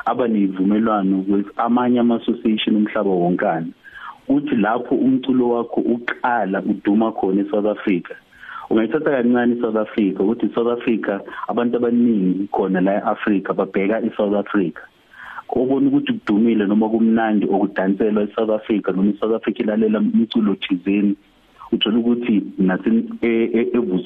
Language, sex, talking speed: English, male, 135 wpm